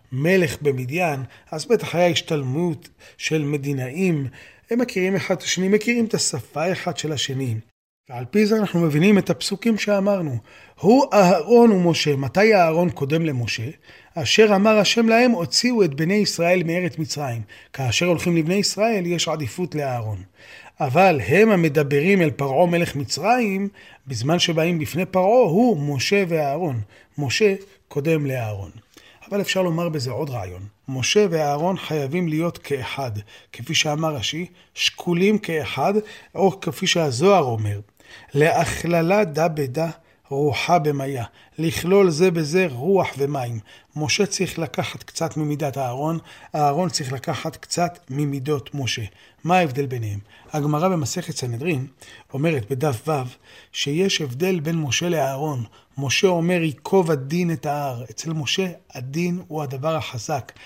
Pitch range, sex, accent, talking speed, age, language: 140-185 Hz, male, native, 135 wpm, 30-49, Hebrew